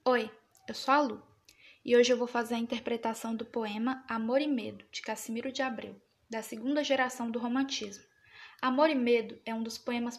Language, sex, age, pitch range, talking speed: Portuguese, female, 10-29, 220-255 Hz, 195 wpm